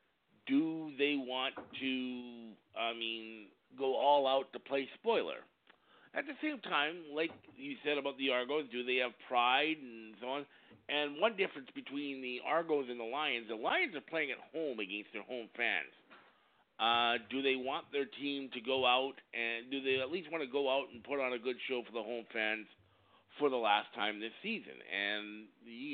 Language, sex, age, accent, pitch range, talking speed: English, male, 50-69, American, 110-140 Hz, 195 wpm